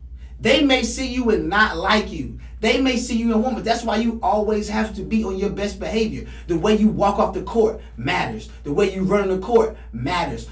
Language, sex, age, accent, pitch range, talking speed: English, male, 30-49, American, 150-220 Hz, 235 wpm